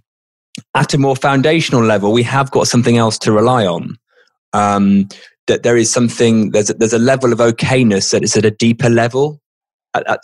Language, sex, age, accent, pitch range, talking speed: English, male, 20-39, British, 105-130 Hz, 195 wpm